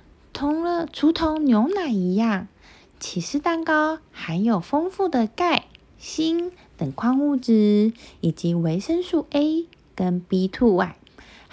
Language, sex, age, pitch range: Chinese, female, 20-39, 205-310 Hz